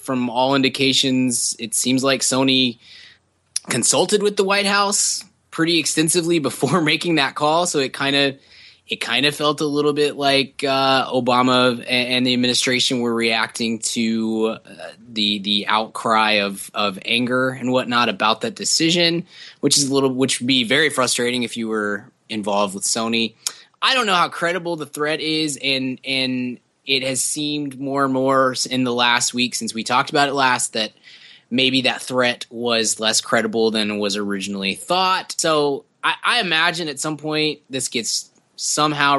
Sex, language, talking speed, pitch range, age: male, English, 175 wpm, 115-150 Hz, 20-39